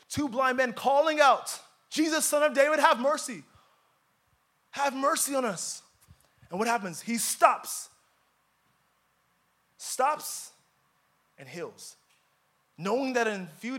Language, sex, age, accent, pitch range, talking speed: English, male, 20-39, American, 185-250 Hz, 120 wpm